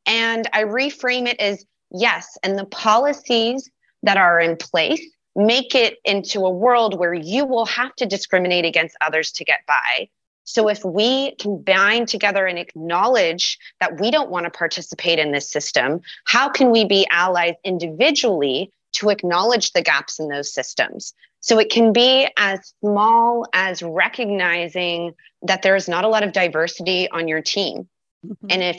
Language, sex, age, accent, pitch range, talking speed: German, female, 30-49, American, 180-230 Hz, 165 wpm